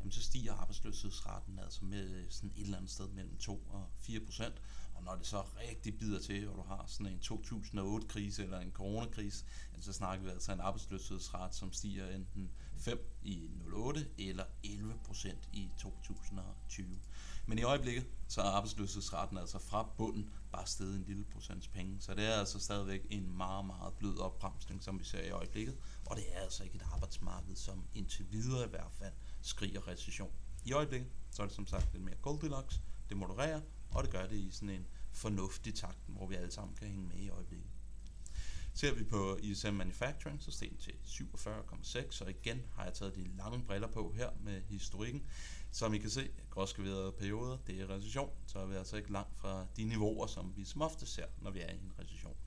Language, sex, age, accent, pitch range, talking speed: Danish, male, 30-49, native, 95-105 Hz, 200 wpm